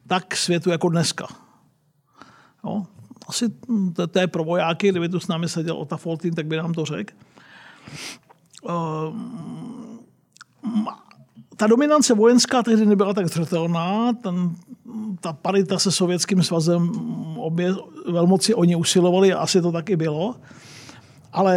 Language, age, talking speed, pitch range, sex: Czech, 50-69, 120 wpm, 175-220 Hz, male